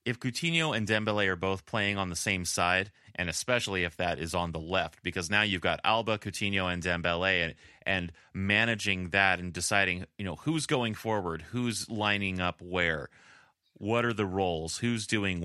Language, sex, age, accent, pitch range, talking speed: English, male, 30-49, American, 90-115 Hz, 185 wpm